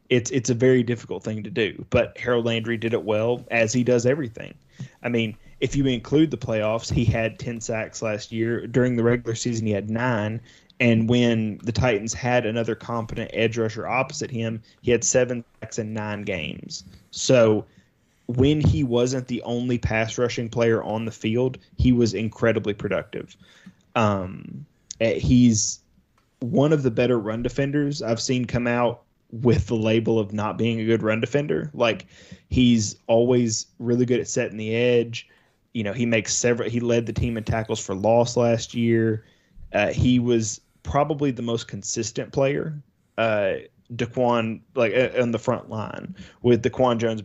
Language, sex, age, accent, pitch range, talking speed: English, male, 20-39, American, 110-125 Hz, 170 wpm